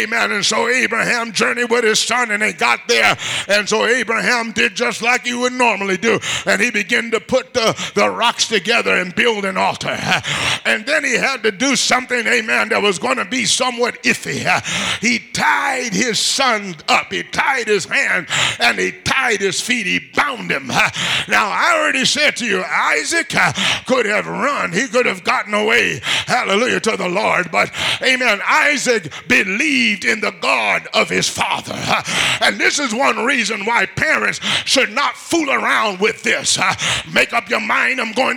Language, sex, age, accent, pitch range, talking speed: English, male, 50-69, American, 220-255 Hz, 180 wpm